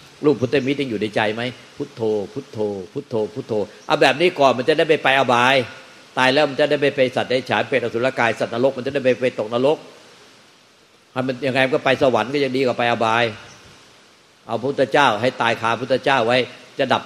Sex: male